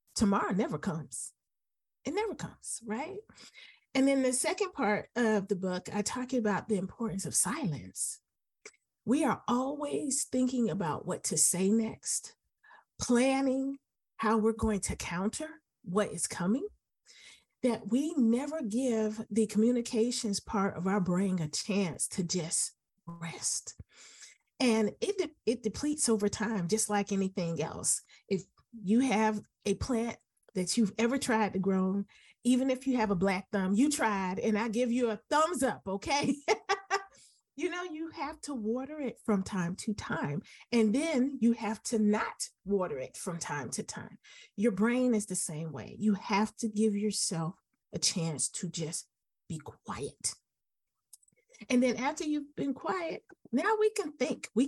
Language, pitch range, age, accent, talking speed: English, 195-255 Hz, 40-59, American, 155 wpm